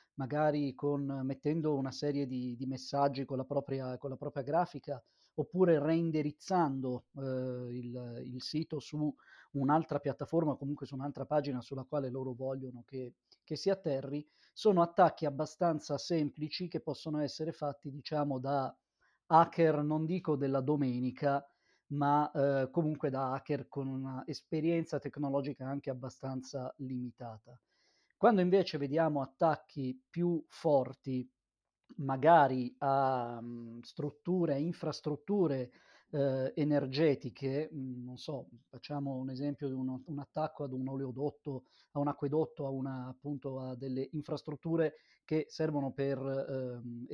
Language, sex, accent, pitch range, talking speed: Italian, male, native, 135-155 Hz, 130 wpm